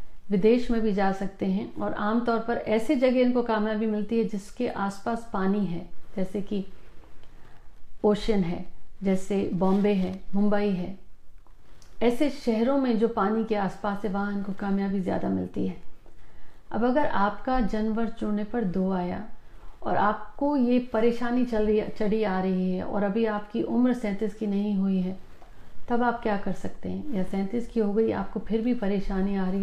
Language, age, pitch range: Hindi, 50-69, 195-230 Hz